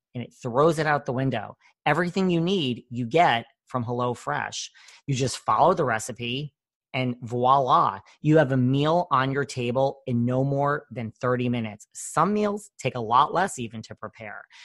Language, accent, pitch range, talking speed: English, American, 120-150 Hz, 175 wpm